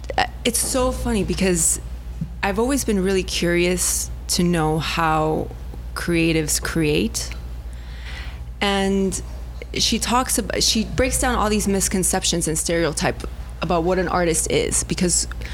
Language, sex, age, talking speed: English, female, 20-39, 125 wpm